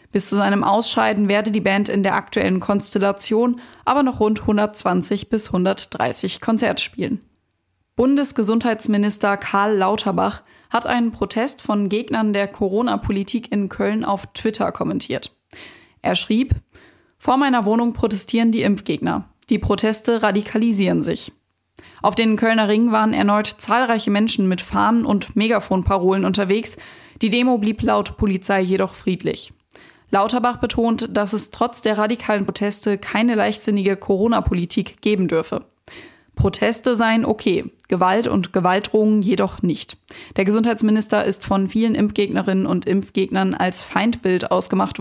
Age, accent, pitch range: 20-39, German, 195-225 Hz